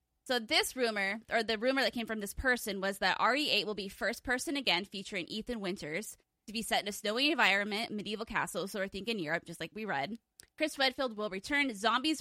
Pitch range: 195-240 Hz